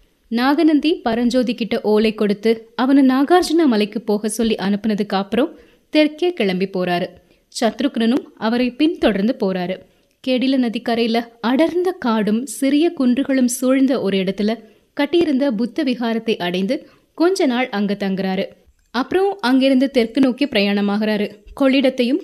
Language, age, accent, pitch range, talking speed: Tamil, 20-39, native, 215-285 Hz, 115 wpm